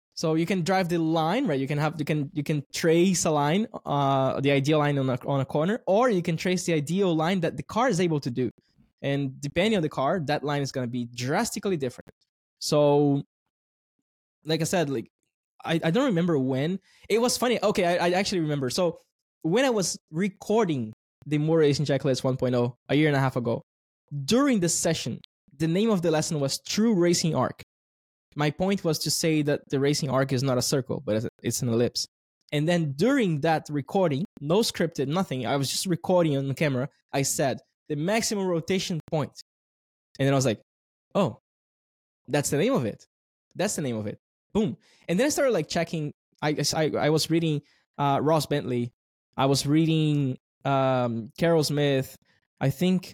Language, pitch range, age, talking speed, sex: English, 135-170 Hz, 20-39, 200 wpm, male